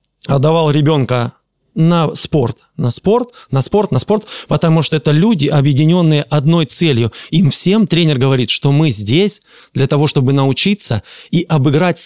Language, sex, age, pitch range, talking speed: Russian, male, 20-39, 140-180 Hz, 150 wpm